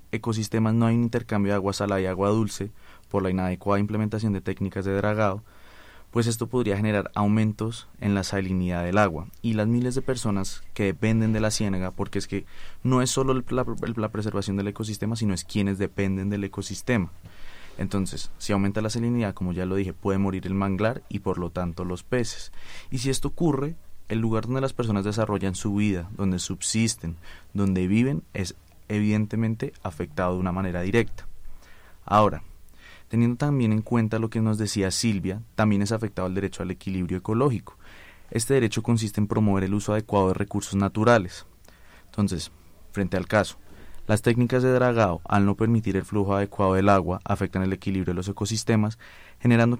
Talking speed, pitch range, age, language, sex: 180 wpm, 95-115 Hz, 20-39, Spanish, male